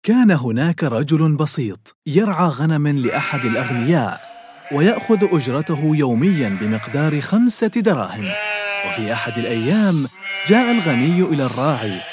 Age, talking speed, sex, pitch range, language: 30-49, 105 wpm, male, 130-205 Hz, Arabic